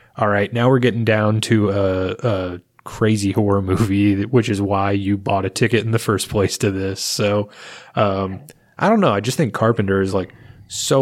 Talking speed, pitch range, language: 200 wpm, 95-115 Hz, English